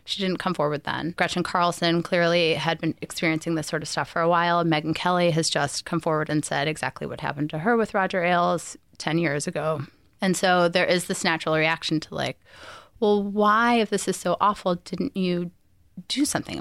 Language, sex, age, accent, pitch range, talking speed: English, female, 20-39, American, 160-190 Hz, 205 wpm